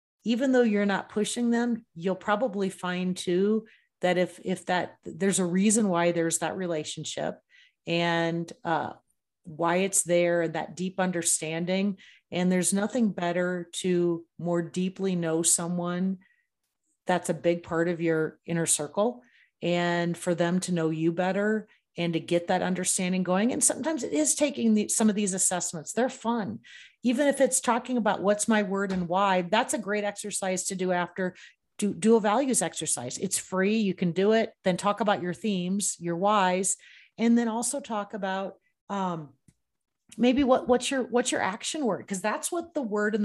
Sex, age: female, 30-49